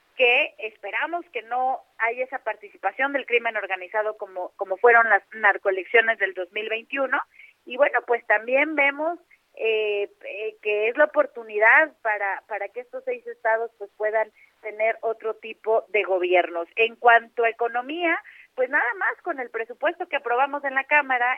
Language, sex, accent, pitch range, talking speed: Spanish, female, Mexican, 215-270 Hz, 155 wpm